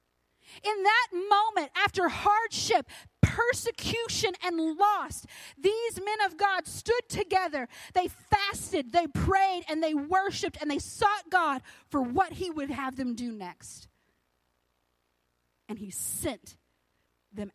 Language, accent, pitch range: English, American, 175-285 Hz